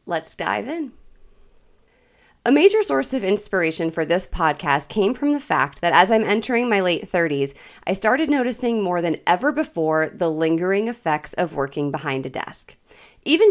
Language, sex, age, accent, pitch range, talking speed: English, female, 30-49, American, 165-235 Hz, 170 wpm